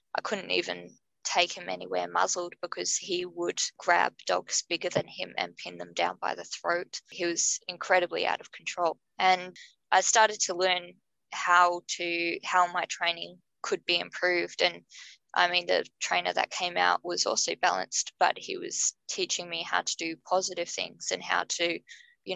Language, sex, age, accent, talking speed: English, female, 20-39, Australian, 175 wpm